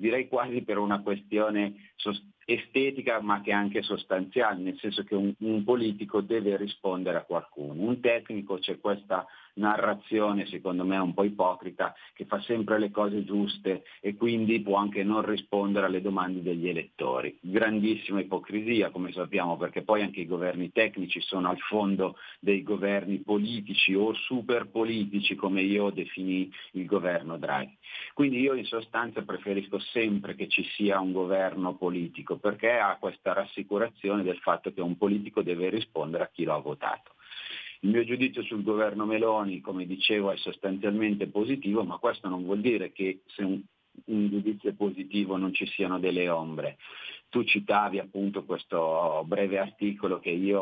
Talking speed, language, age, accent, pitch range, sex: 160 wpm, Italian, 40-59, native, 95-105 Hz, male